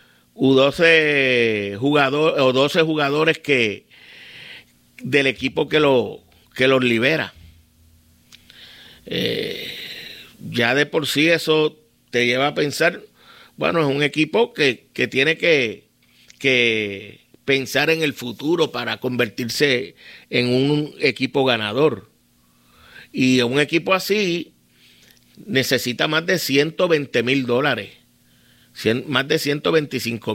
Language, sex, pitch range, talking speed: Spanish, male, 100-145 Hz, 115 wpm